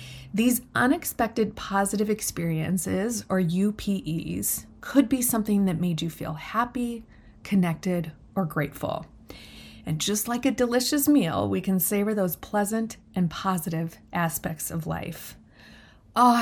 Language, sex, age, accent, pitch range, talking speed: English, female, 30-49, American, 180-220 Hz, 125 wpm